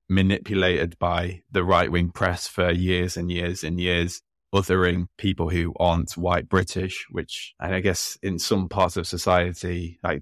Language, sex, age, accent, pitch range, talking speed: English, male, 20-39, British, 85-95 Hz, 160 wpm